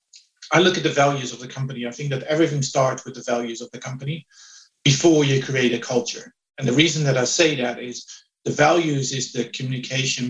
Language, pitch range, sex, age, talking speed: English, 120-145 Hz, male, 50-69, 215 wpm